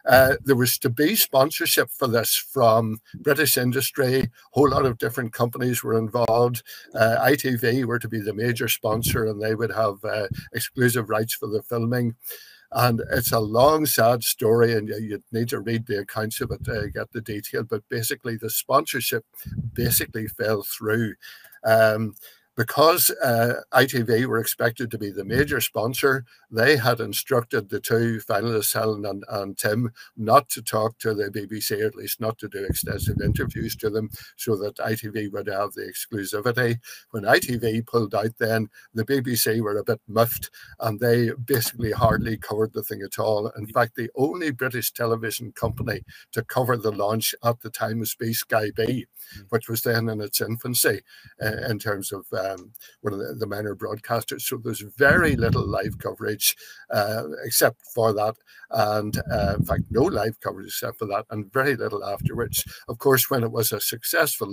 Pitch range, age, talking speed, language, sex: 110-125 Hz, 60-79, 180 wpm, English, male